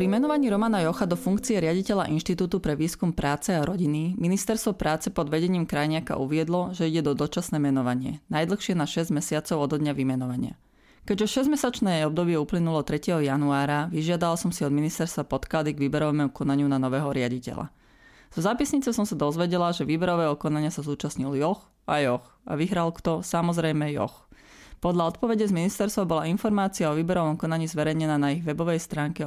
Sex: female